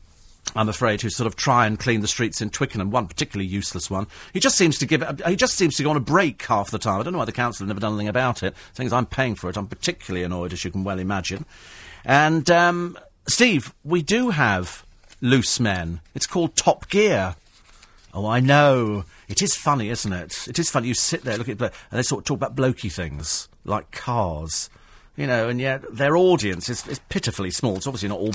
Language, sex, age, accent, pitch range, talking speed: English, male, 40-59, British, 95-145 Hz, 235 wpm